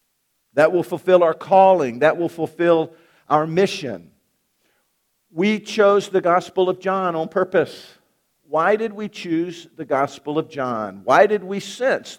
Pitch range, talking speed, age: 145-200 Hz, 150 wpm, 50-69